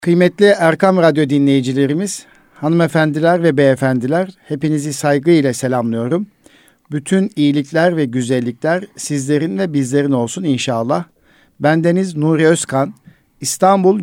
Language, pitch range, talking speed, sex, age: Turkish, 135-165 Hz, 100 wpm, male, 50-69